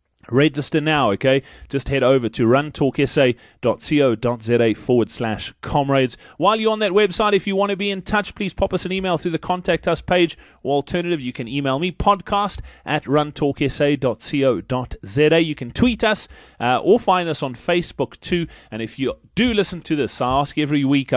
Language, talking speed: English, 180 wpm